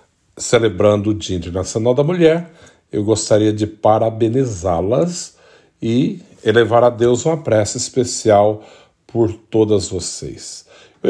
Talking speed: 115 wpm